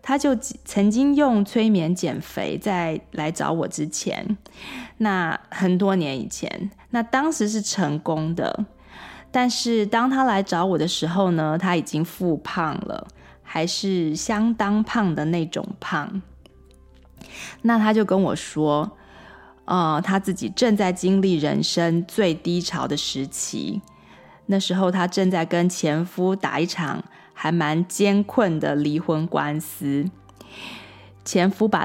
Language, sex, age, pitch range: Chinese, female, 20-39, 160-200 Hz